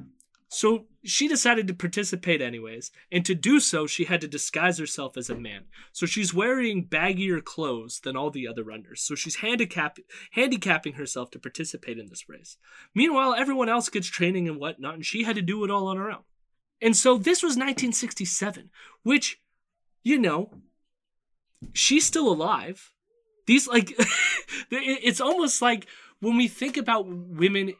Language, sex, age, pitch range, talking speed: English, male, 20-39, 155-235 Hz, 165 wpm